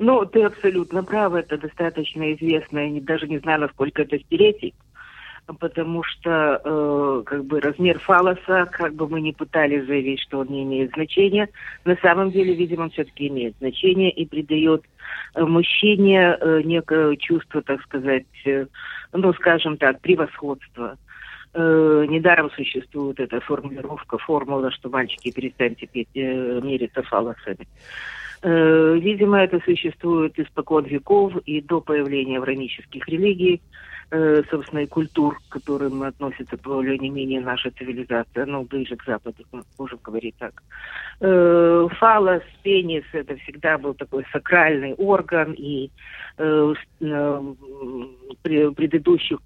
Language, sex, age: English, female, 40-59